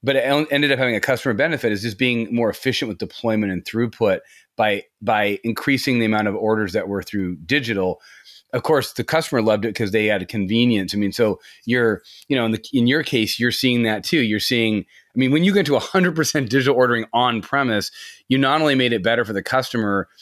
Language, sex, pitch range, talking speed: English, male, 105-130 Hz, 225 wpm